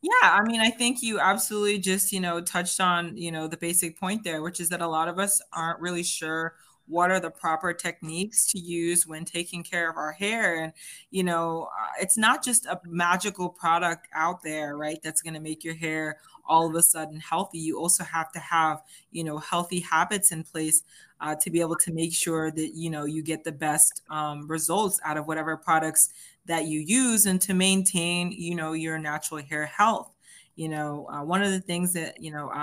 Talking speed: 215 wpm